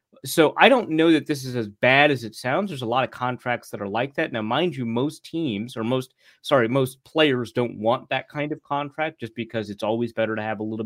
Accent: American